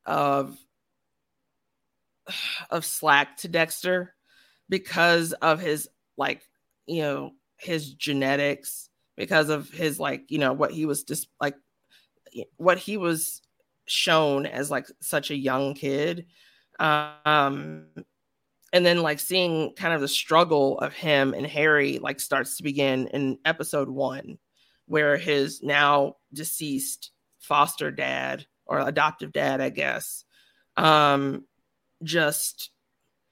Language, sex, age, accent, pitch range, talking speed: English, female, 30-49, American, 140-165 Hz, 120 wpm